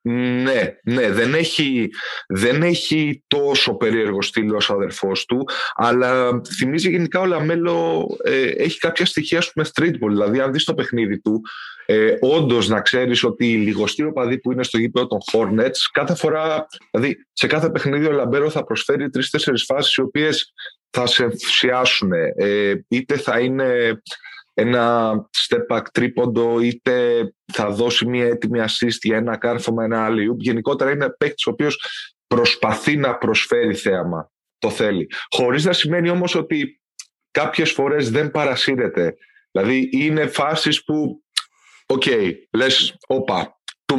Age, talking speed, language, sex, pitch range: 20-39, 145 wpm, Greek, male, 115-155 Hz